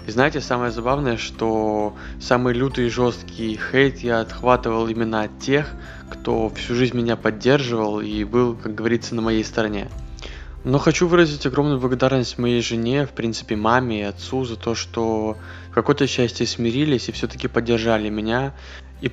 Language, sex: Ukrainian, male